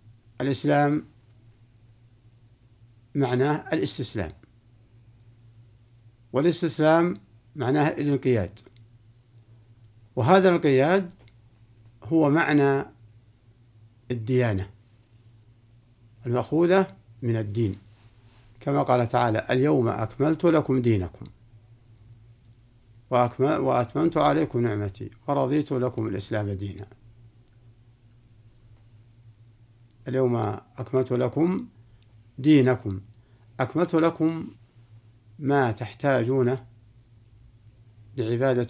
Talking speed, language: 60 wpm, Arabic